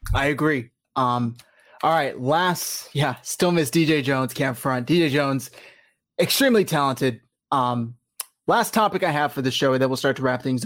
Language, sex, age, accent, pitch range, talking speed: English, male, 20-39, American, 130-165 Hz, 175 wpm